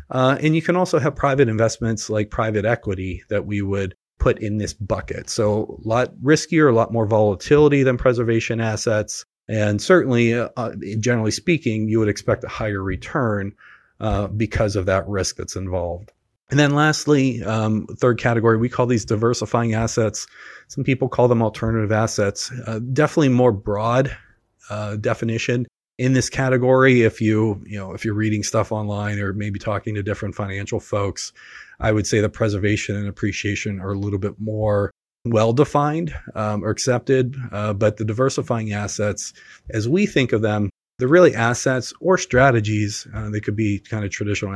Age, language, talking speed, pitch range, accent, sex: 30-49, English, 170 wpm, 105-125 Hz, American, male